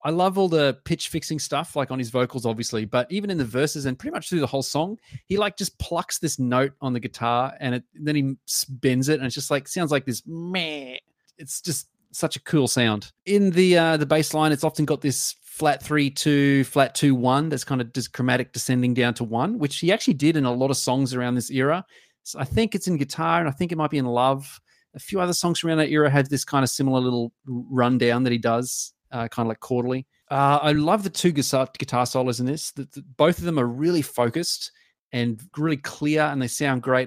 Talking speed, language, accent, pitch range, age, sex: 245 wpm, English, Australian, 125-155 Hz, 30-49, male